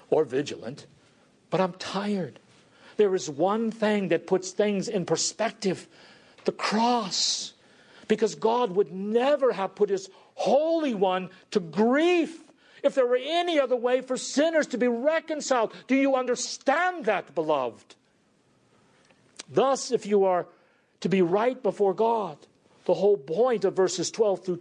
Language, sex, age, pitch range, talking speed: English, male, 50-69, 175-245 Hz, 145 wpm